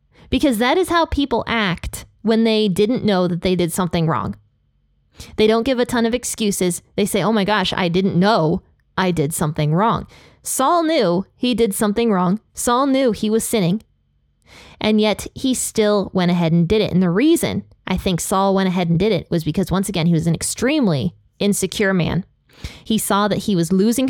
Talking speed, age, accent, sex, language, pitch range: 200 wpm, 20-39, American, female, English, 175-230 Hz